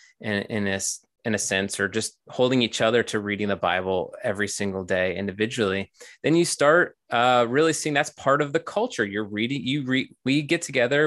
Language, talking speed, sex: English, 205 wpm, male